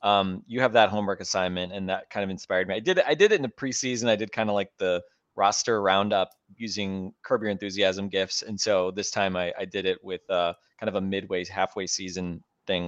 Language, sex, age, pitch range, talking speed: English, male, 20-39, 95-115 Hz, 235 wpm